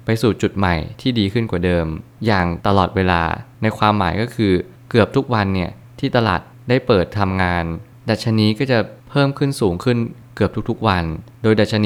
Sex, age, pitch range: male, 20-39, 95-120 Hz